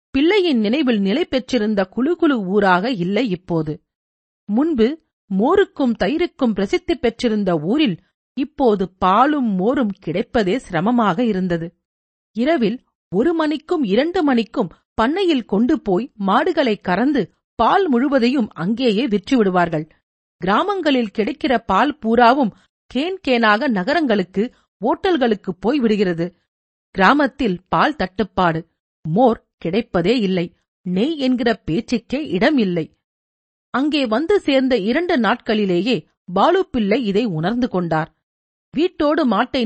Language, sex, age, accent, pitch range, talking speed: Tamil, female, 50-69, native, 190-270 Hz, 95 wpm